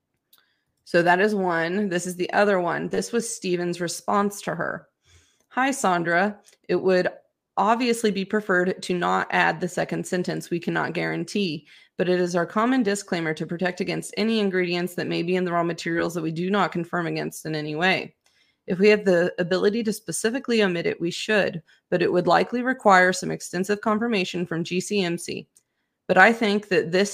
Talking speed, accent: 185 wpm, American